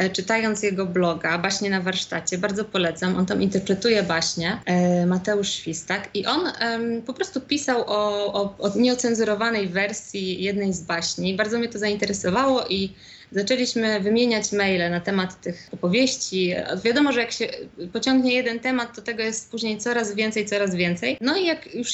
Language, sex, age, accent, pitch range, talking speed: Polish, female, 20-39, native, 190-230 Hz, 155 wpm